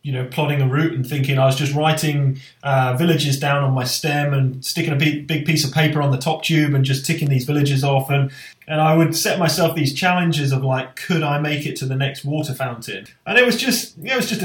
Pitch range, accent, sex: 135-165 Hz, British, male